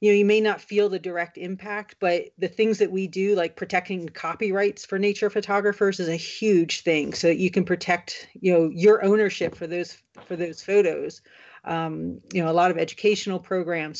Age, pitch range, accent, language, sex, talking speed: 40-59, 170-200 Hz, American, English, female, 200 wpm